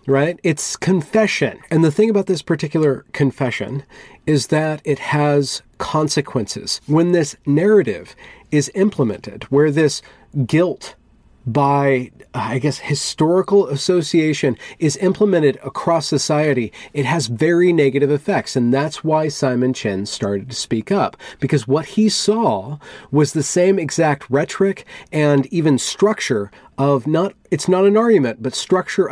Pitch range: 125-160 Hz